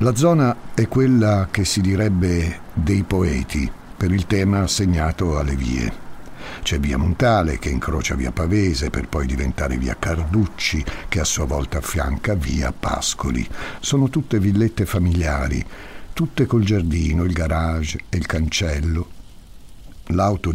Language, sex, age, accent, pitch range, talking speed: Italian, male, 60-79, native, 80-100 Hz, 135 wpm